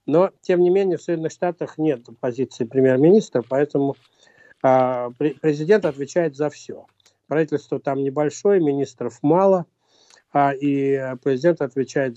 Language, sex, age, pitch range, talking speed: Russian, male, 60-79, 135-165 Hz, 125 wpm